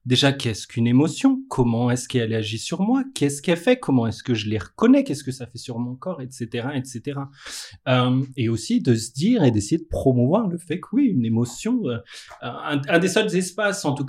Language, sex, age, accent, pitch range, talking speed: French, male, 30-49, French, 120-155 Hz, 210 wpm